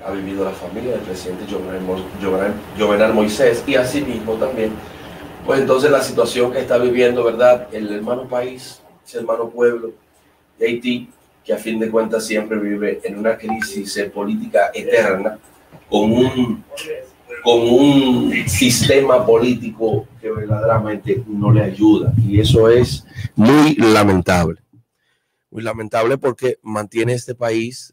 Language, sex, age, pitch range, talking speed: Spanish, male, 30-49, 105-120 Hz, 135 wpm